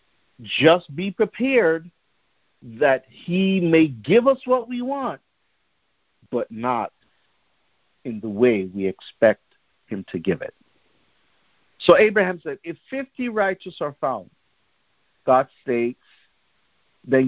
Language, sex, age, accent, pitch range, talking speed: English, male, 50-69, American, 120-185 Hz, 115 wpm